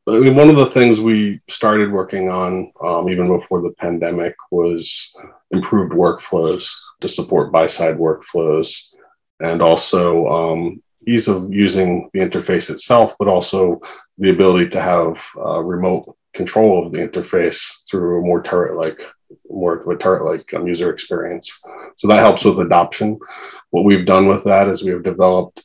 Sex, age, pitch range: male, 30-49, 85-100 Hz